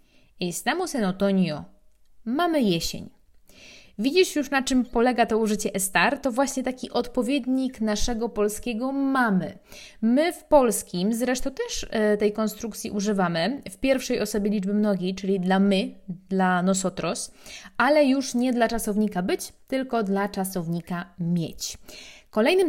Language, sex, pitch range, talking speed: Polish, female, 195-265 Hz, 130 wpm